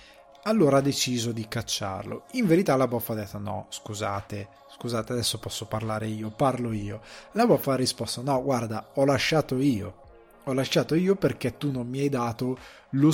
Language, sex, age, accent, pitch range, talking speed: Italian, male, 20-39, native, 110-140 Hz, 180 wpm